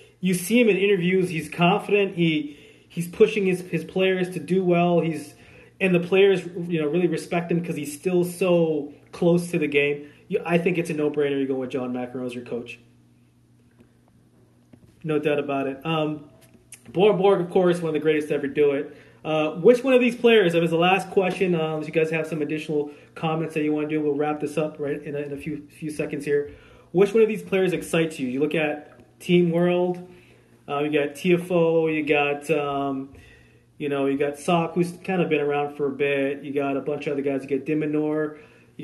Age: 30-49